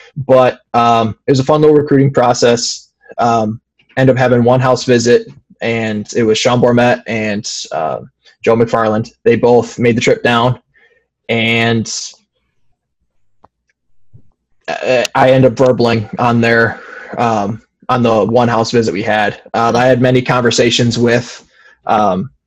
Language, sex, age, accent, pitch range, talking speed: English, male, 20-39, American, 115-125 Hz, 140 wpm